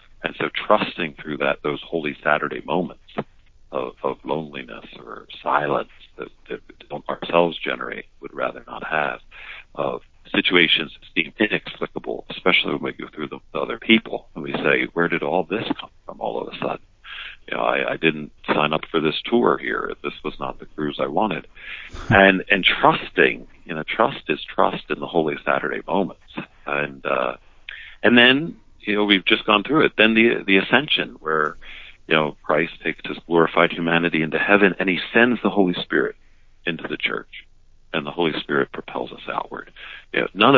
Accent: American